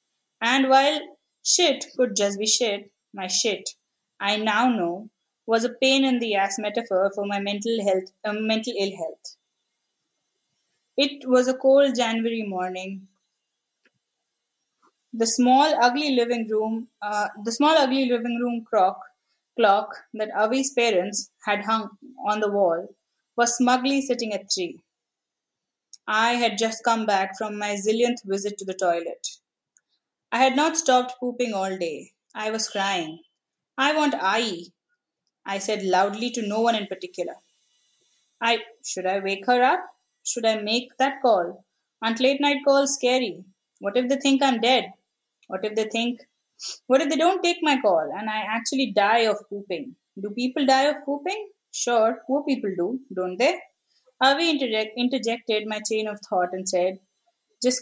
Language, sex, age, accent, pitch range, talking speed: English, female, 20-39, Indian, 200-260 Hz, 155 wpm